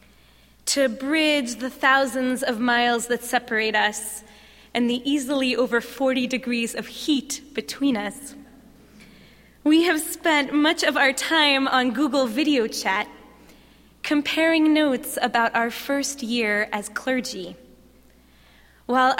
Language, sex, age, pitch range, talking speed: English, female, 20-39, 220-280 Hz, 120 wpm